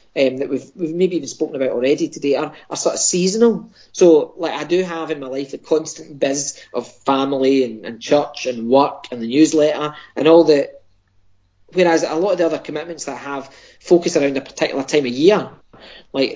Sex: male